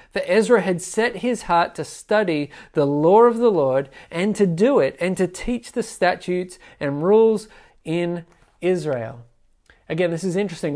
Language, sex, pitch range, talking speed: English, male, 155-195 Hz, 165 wpm